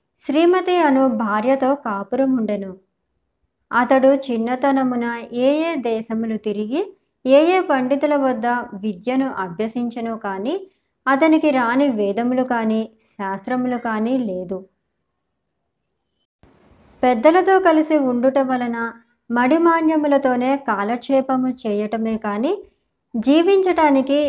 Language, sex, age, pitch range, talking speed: Telugu, male, 20-39, 225-280 Hz, 75 wpm